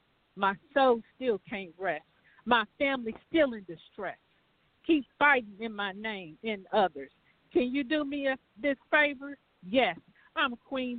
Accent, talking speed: American, 145 wpm